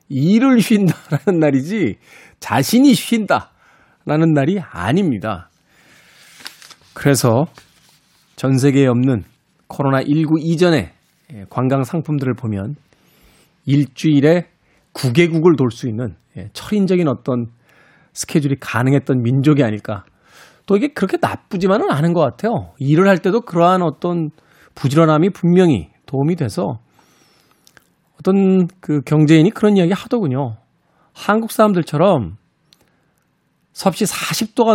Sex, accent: male, native